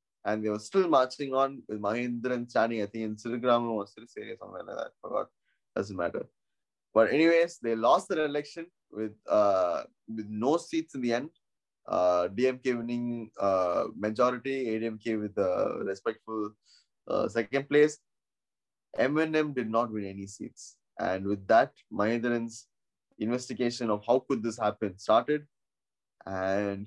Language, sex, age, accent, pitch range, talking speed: Tamil, male, 20-39, native, 105-140 Hz, 150 wpm